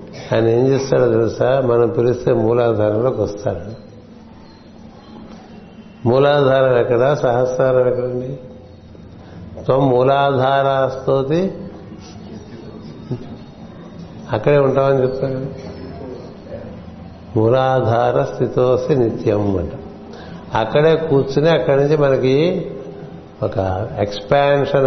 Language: Telugu